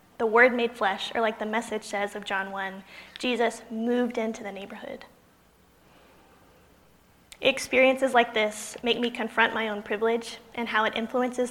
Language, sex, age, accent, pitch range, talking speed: English, female, 20-39, American, 215-250 Hz, 155 wpm